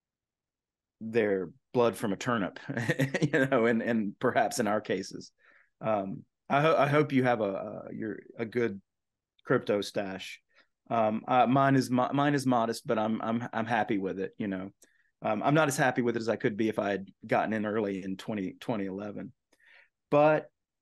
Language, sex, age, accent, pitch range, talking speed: English, male, 30-49, American, 105-130 Hz, 185 wpm